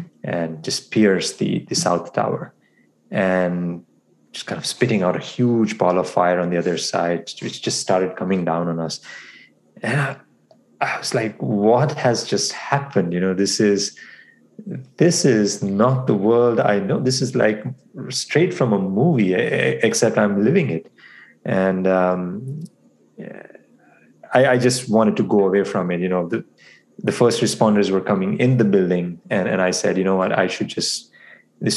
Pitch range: 90-105 Hz